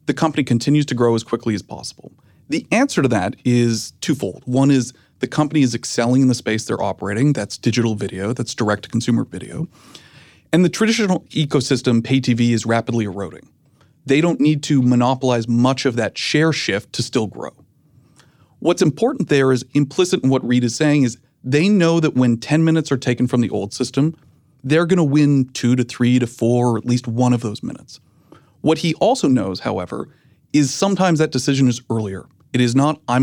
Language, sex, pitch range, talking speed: English, male, 120-150 Hz, 195 wpm